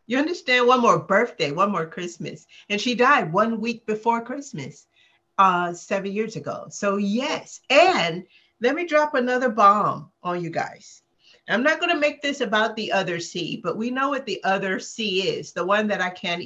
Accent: American